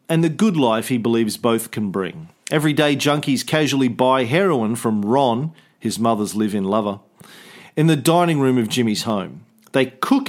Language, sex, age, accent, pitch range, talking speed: English, male, 40-59, Australian, 120-170 Hz, 175 wpm